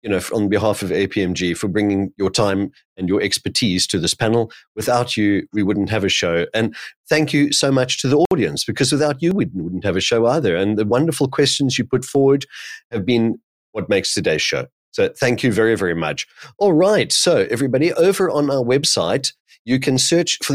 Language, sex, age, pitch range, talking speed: English, male, 30-49, 110-155 Hz, 205 wpm